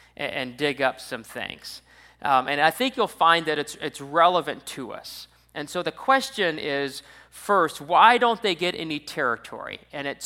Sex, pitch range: male, 120-155 Hz